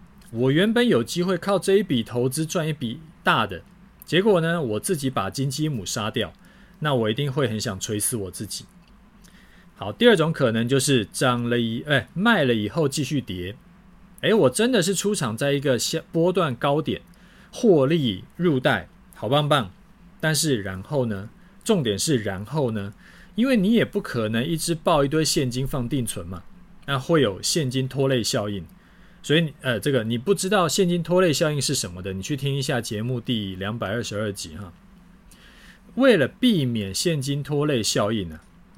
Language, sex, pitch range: Chinese, male, 115-180 Hz